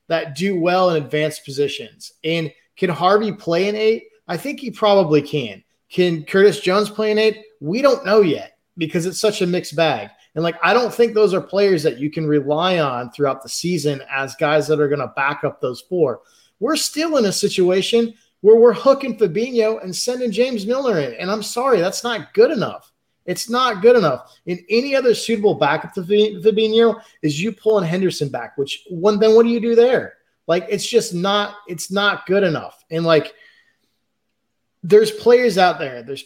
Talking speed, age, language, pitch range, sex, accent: 195 wpm, 30-49, English, 160-225 Hz, male, American